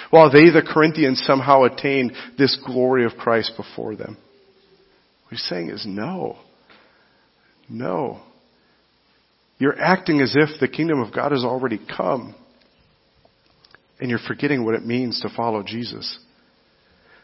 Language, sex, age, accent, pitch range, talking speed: English, male, 40-59, American, 110-145 Hz, 130 wpm